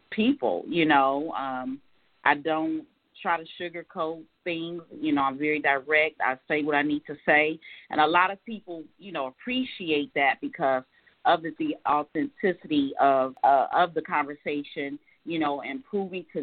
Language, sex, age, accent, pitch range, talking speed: English, female, 40-59, American, 145-175 Hz, 170 wpm